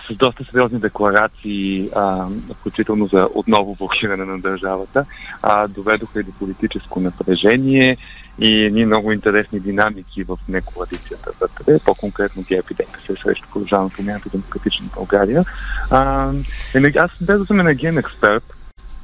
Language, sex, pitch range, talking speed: Bulgarian, male, 95-135 Hz, 120 wpm